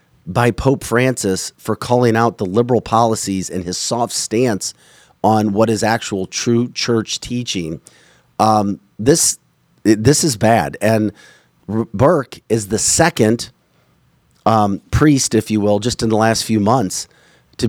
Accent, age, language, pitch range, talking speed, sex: American, 40-59, English, 100-125 Hz, 145 wpm, male